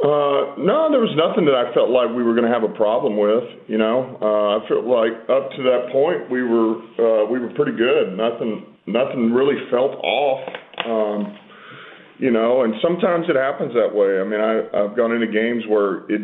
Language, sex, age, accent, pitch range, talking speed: English, male, 40-59, American, 105-125 Hz, 210 wpm